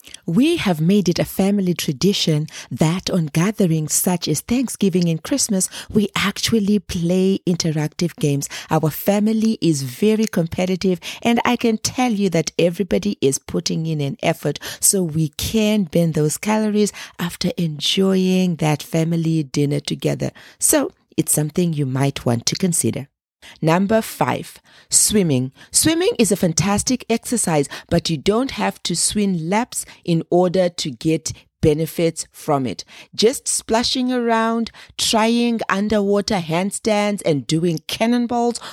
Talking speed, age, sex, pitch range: 135 wpm, 40-59, female, 160-220 Hz